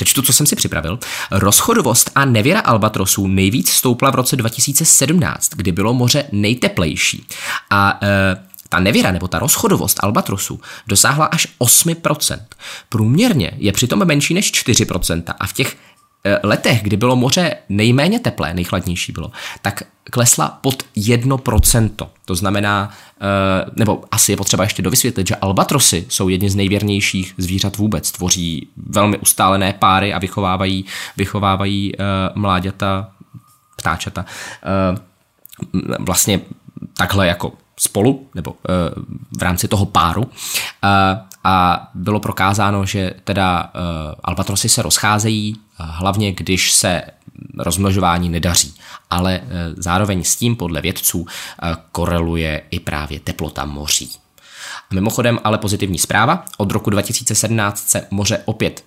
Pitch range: 90-110 Hz